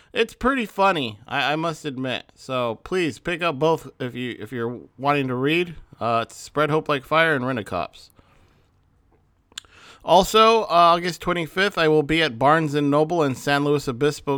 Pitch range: 120-150 Hz